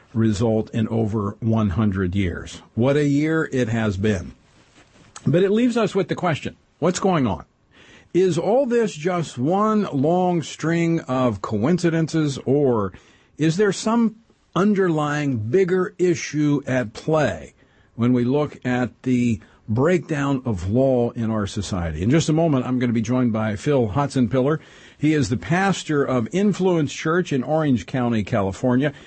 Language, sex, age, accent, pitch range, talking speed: English, male, 50-69, American, 115-160 Hz, 150 wpm